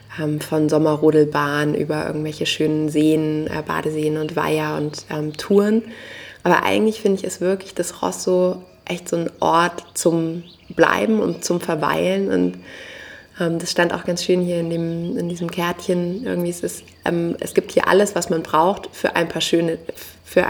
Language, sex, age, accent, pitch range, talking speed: German, female, 20-39, German, 165-195 Hz, 170 wpm